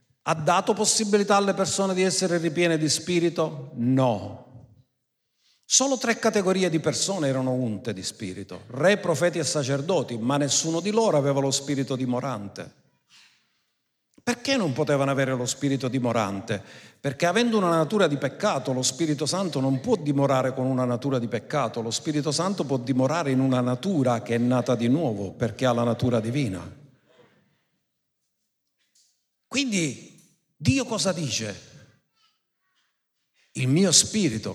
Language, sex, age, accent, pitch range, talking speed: Italian, male, 50-69, native, 125-165 Hz, 140 wpm